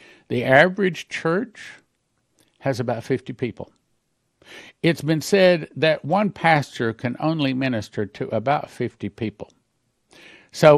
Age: 60-79